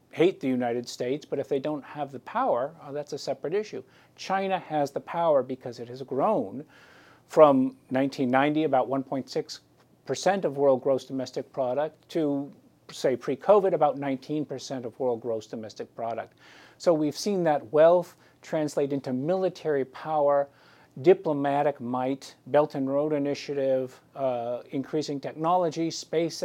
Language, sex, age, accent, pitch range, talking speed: English, male, 50-69, American, 130-150 Hz, 135 wpm